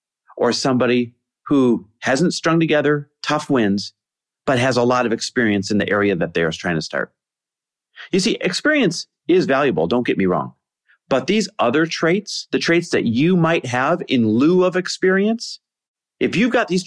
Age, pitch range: 40-59, 115-175 Hz